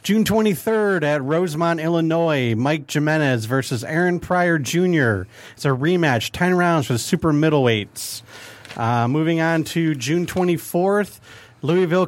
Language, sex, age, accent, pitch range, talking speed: English, male, 40-59, American, 140-190 Hz, 135 wpm